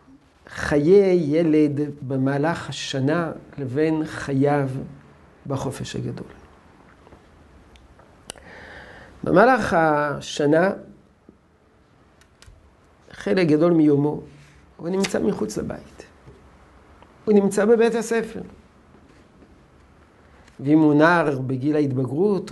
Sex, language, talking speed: male, Hebrew, 70 wpm